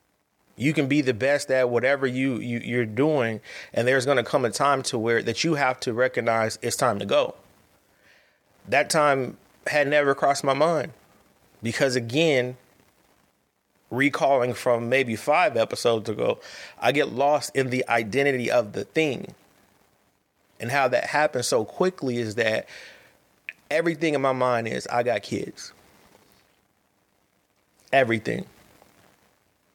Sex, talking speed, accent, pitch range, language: male, 140 wpm, American, 100-130 Hz, English